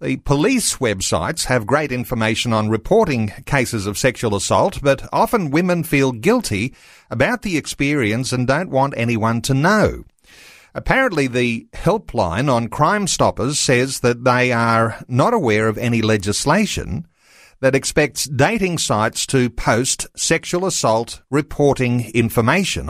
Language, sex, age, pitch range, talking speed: English, male, 50-69, 110-145 Hz, 135 wpm